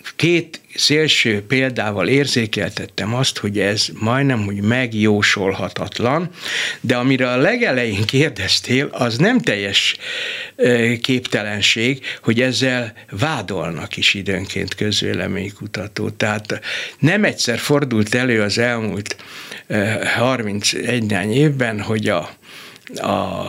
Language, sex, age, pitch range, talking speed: Hungarian, male, 60-79, 110-150 Hz, 95 wpm